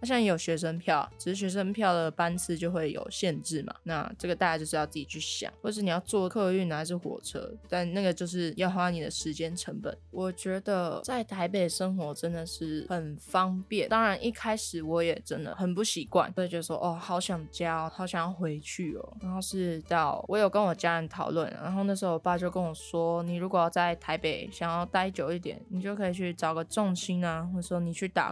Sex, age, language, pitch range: female, 20-39, Chinese, 165-190 Hz